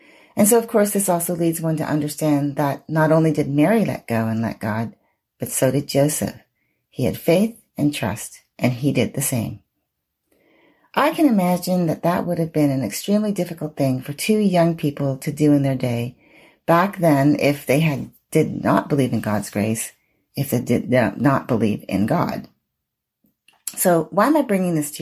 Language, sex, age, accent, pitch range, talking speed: English, female, 40-59, American, 135-180 Hz, 190 wpm